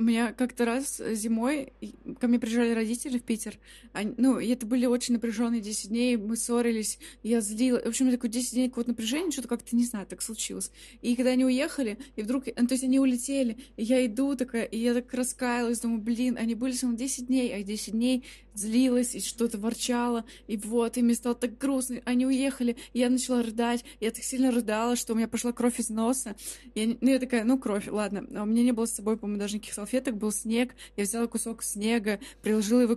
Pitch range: 225-250 Hz